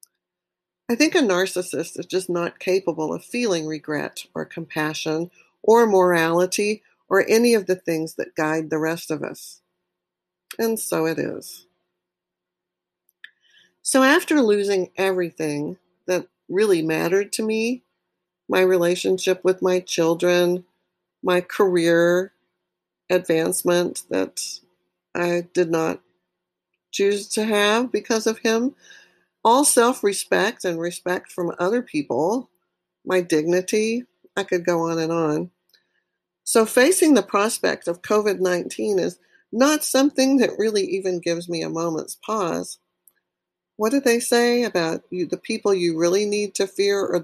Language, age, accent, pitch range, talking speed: English, 50-69, American, 165-215 Hz, 130 wpm